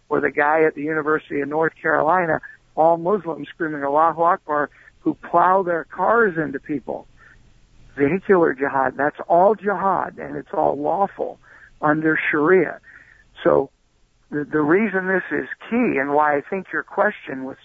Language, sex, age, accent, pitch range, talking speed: English, male, 60-79, American, 150-195 Hz, 150 wpm